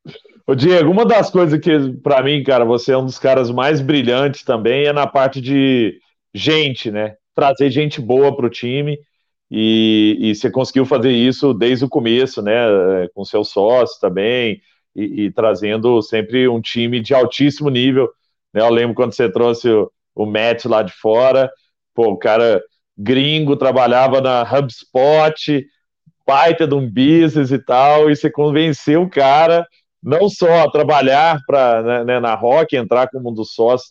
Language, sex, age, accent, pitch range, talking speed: Portuguese, male, 40-59, Brazilian, 125-170 Hz, 165 wpm